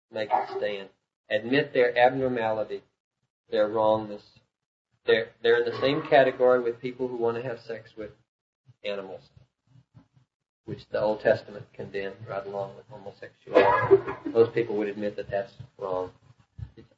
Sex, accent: male, American